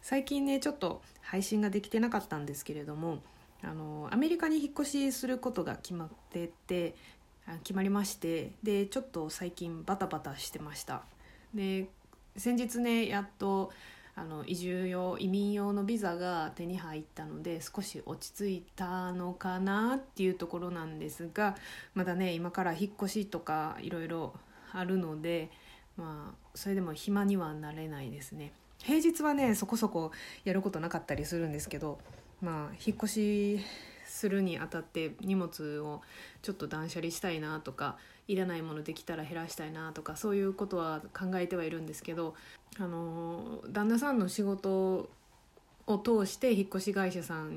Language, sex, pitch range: Japanese, female, 165-205 Hz